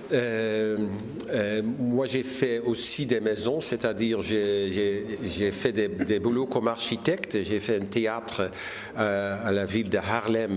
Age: 50-69